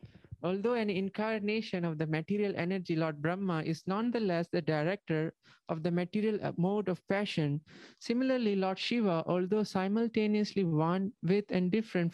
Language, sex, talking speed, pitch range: English, male, 140 wpm, 160-205 Hz